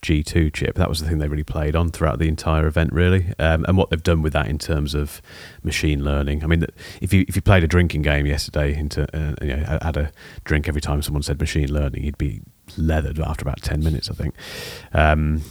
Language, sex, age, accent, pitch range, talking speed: English, male, 30-49, British, 75-90 Hz, 240 wpm